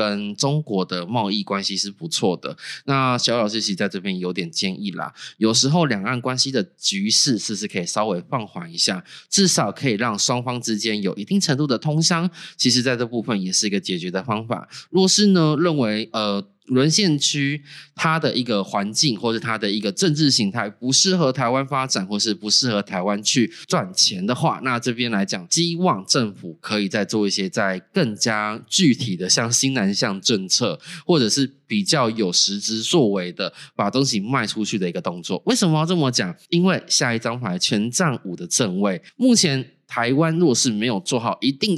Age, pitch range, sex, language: 20-39, 105-165 Hz, male, Chinese